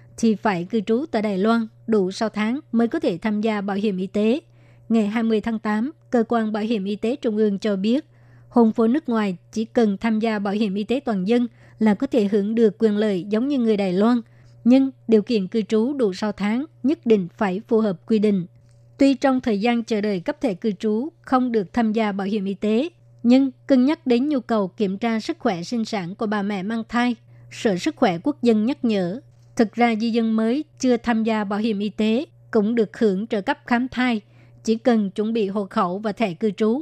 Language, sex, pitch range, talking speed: Vietnamese, male, 205-235 Hz, 235 wpm